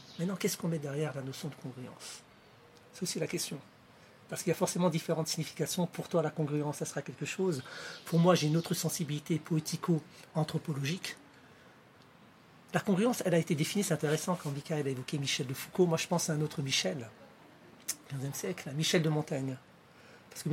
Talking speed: 185 wpm